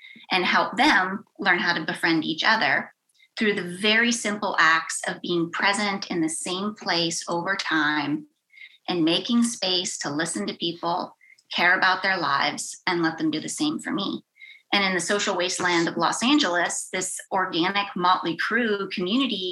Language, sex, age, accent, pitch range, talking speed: English, female, 30-49, American, 175-255 Hz, 170 wpm